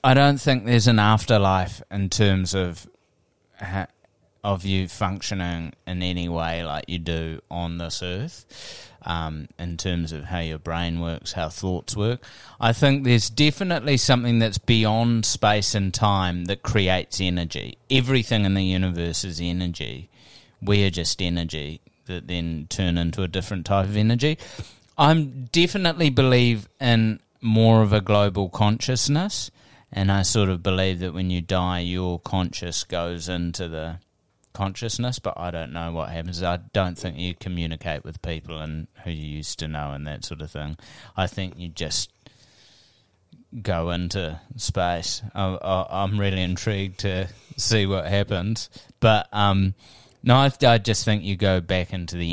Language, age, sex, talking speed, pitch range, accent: English, 30-49, male, 160 wpm, 85-110 Hz, Australian